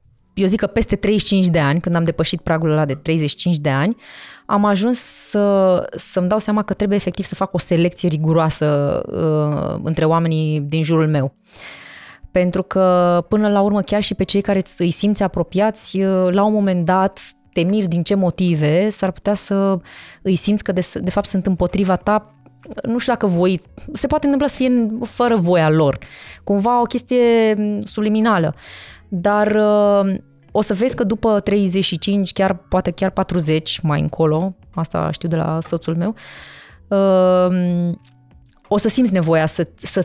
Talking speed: 170 wpm